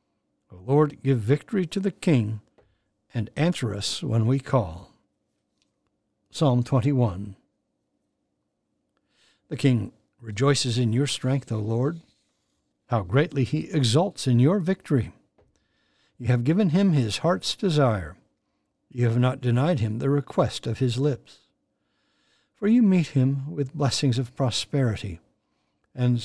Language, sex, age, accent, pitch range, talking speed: English, male, 60-79, American, 115-150 Hz, 130 wpm